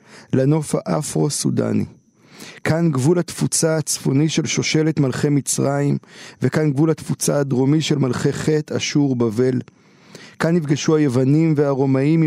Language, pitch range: Hebrew, 130-155 Hz